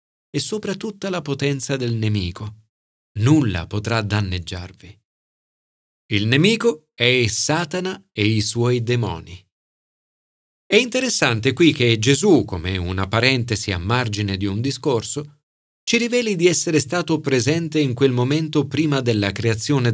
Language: Italian